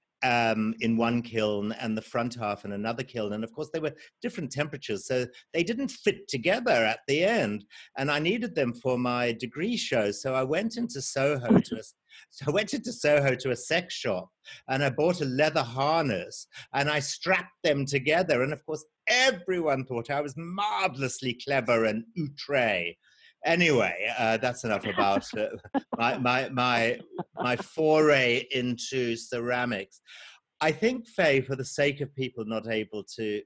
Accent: British